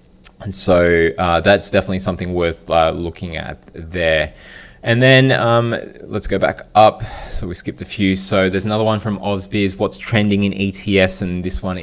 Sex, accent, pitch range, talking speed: male, Australian, 90-100 Hz, 185 wpm